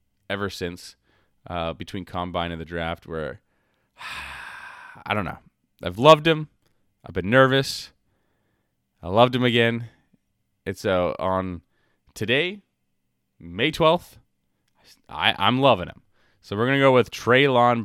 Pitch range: 85-120 Hz